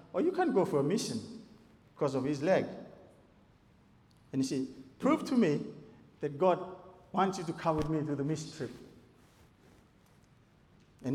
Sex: male